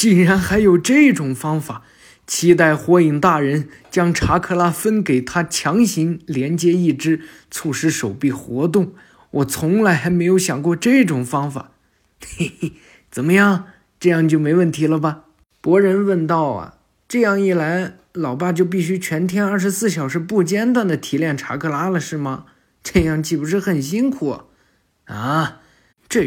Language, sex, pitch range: Chinese, male, 135-185 Hz